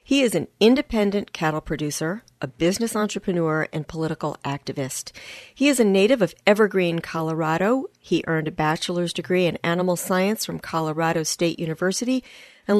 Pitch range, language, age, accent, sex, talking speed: 160-195 Hz, English, 40-59, American, female, 150 wpm